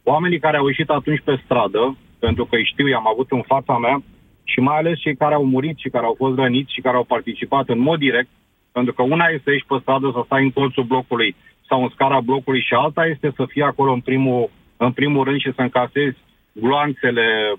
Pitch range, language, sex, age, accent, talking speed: 125-145 Hz, Romanian, male, 40-59, native, 230 wpm